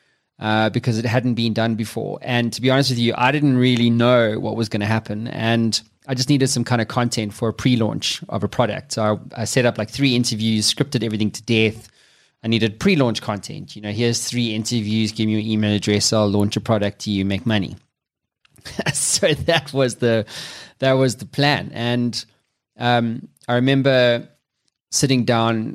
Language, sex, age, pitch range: English, male, 20-39, 110-125 Hz